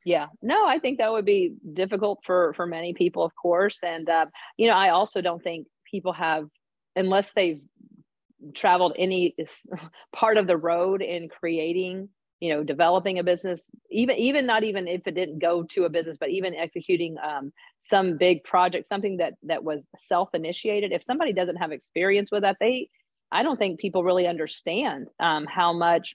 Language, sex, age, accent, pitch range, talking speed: English, female, 40-59, American, 170-205 Hz, 180 wpm